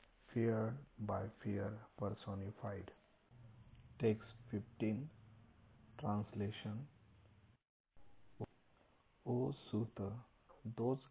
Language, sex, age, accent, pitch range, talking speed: English, male, 50-69, Indian, 100-115 Hz, 55 wpm